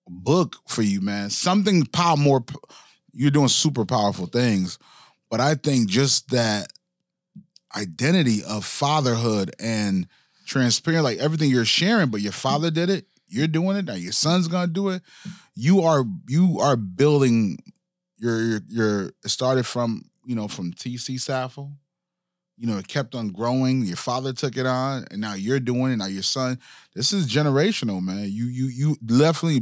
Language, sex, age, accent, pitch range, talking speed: English, male, 30-49, American, 110-150 Hz, 165 wpm